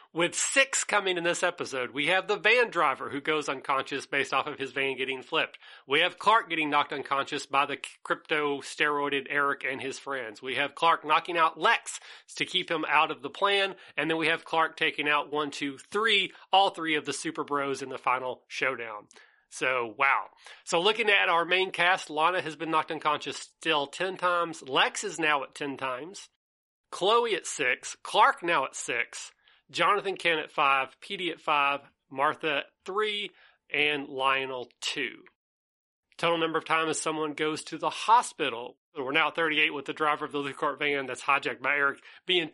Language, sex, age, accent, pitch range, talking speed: English, male, 30-49, American, 140-185 Hz, 190 wpm